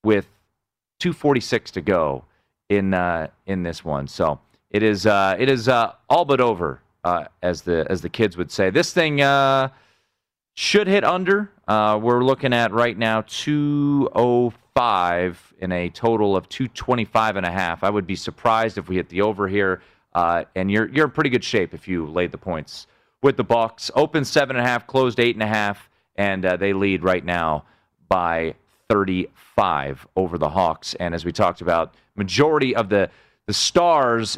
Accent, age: American, 30-49